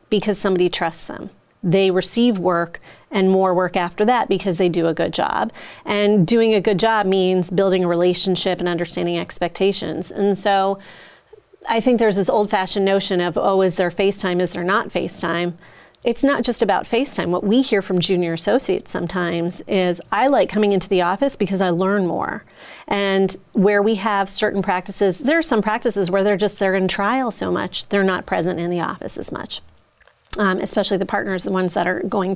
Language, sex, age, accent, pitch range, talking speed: English, female, 30-49, American, 185-220 Hz, 195 wpm